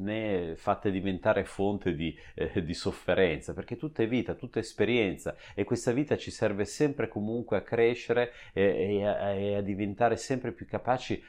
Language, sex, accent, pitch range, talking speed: Italian, male, native, 90-115 Hz, 175 wpm